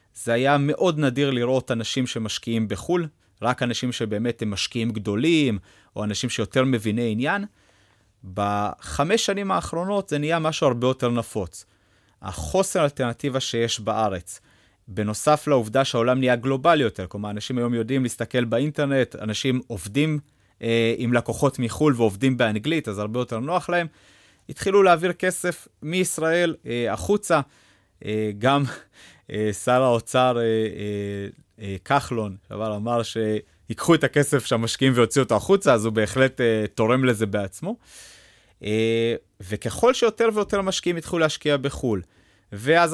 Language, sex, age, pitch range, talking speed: Hebrew, male, 30-49, 110-150 Hz, 135 wpm